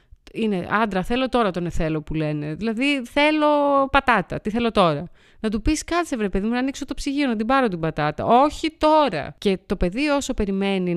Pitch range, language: 160-240 Hz, Greek